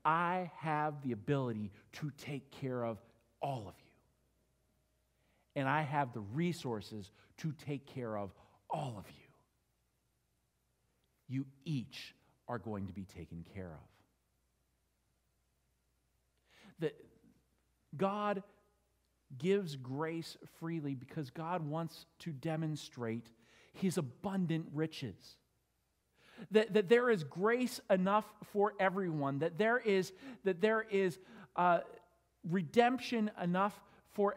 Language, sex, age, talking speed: English, male, 50-69, 110 wpm